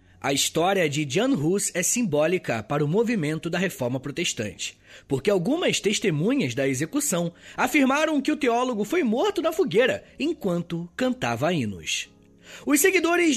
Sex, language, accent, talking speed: male, Portuguese, Brazilian, 140 wpm